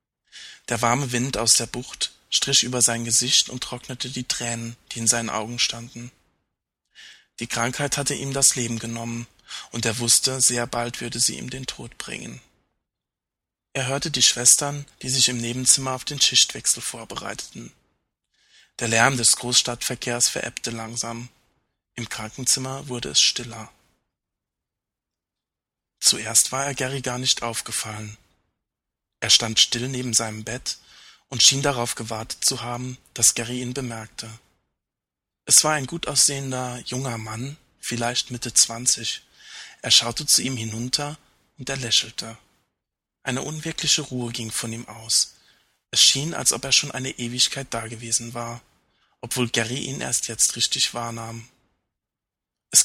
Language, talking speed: German, 145 wpm